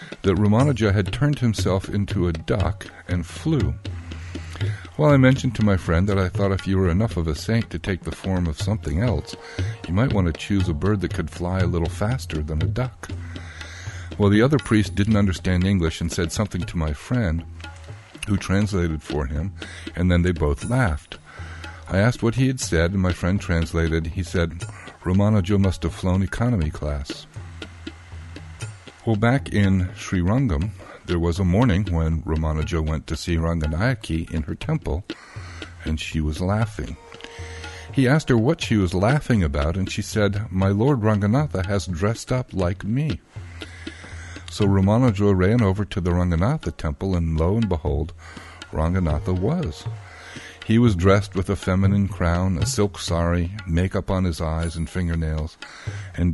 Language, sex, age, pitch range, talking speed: English, male, 50-69, 85-105 Hz, 170 wpm